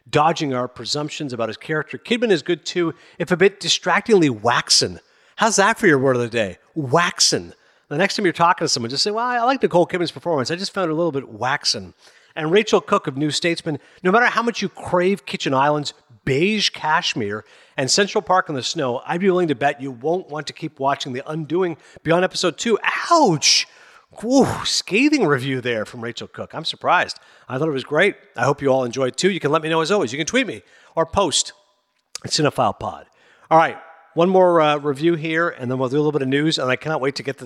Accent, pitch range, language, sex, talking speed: American, 130-185 Hz, English, male, 230 wpm